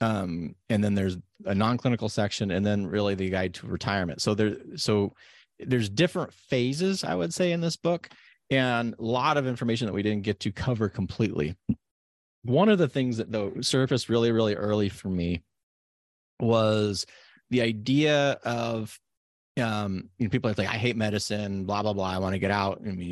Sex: male